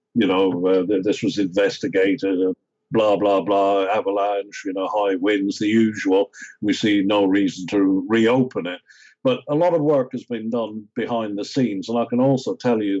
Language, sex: English, male